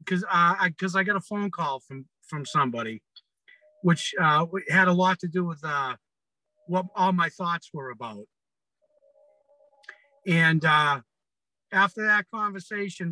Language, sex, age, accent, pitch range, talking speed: English, male, 50-69, American, 150-195 Hz, 145 wpm